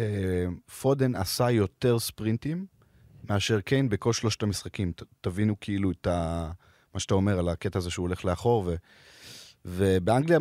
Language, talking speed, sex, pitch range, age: Hebrew, 145 wpm, male, 95-120 Hz, 30-49